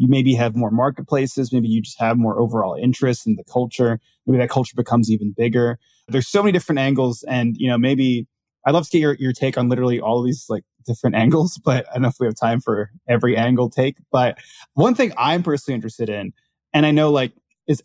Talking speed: 230 wpm